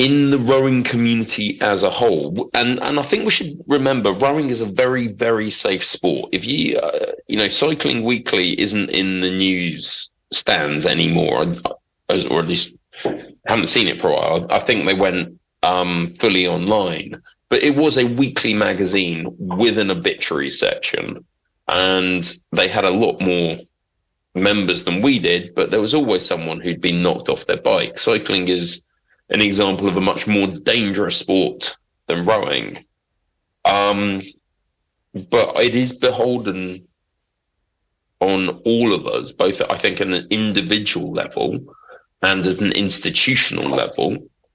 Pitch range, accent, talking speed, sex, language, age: 90-120 Hz, British, 155 wpm, male, English, 30-49